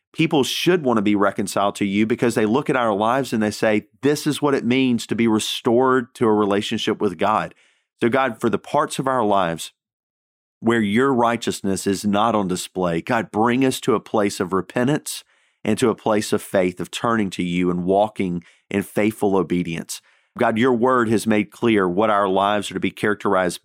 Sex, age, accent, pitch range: male, 40-59, American, 100-115 Hz